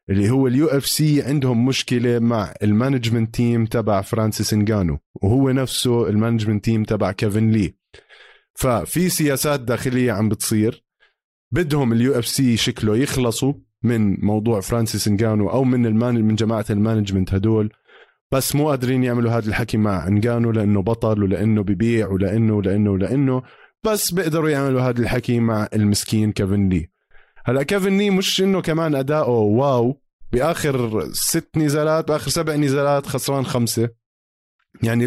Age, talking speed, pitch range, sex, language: 20-39, 135 wpm, 105-130 Hz, male, Arabic